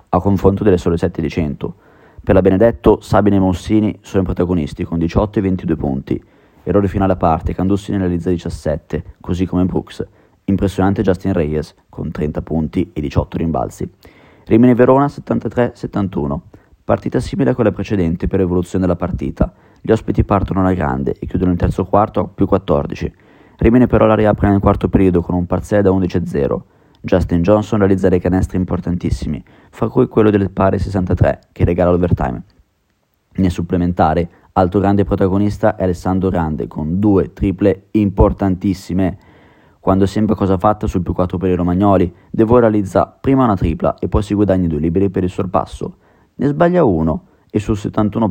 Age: 20-39